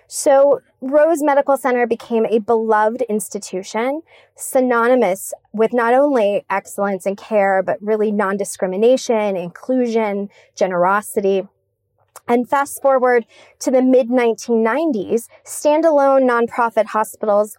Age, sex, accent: 20-39, female, American